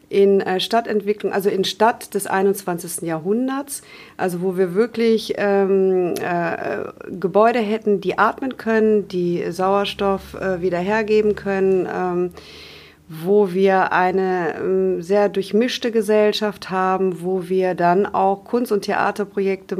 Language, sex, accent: German, female, German